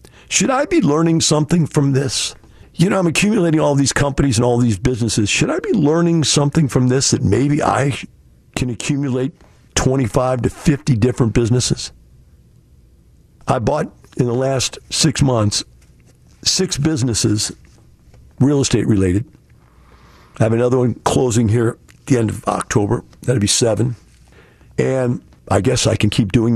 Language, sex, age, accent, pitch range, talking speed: English, male, 50-69, American, 105-155 Hz, 150 wpm